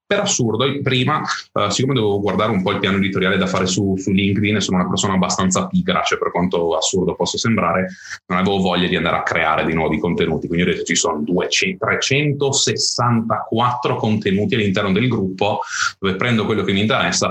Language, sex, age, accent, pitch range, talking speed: Italian, male, 30-49, native, 100-140 Hz, 185 wpm